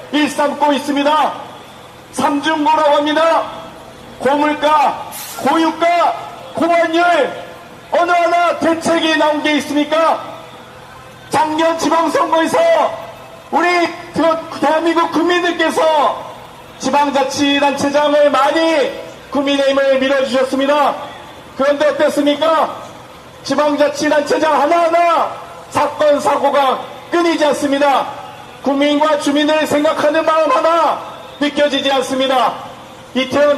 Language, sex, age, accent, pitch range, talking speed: English, male, 40-59, Korean, 280-315 Hz, 70 wpm